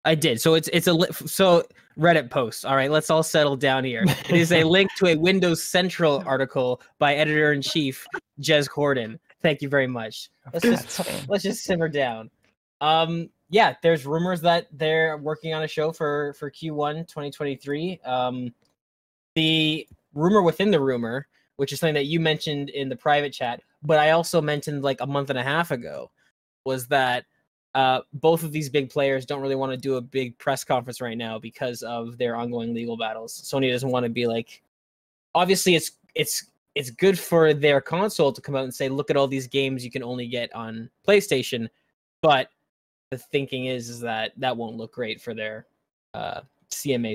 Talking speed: 195 wpm